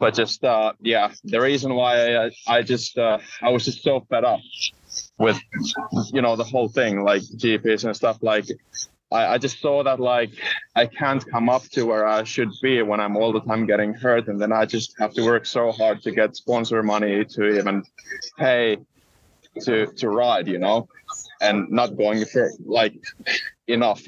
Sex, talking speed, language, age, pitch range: male, 190 wpm, English, 20-39, 105-125 Hz